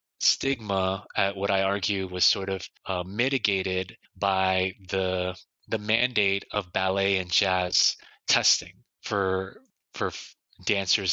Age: 20-39